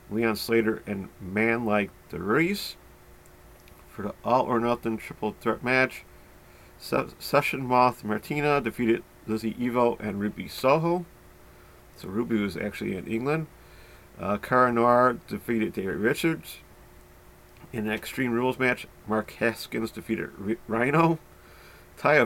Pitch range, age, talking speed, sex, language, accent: 105-130 Hz, 40-59, 120 wpm, male, English, American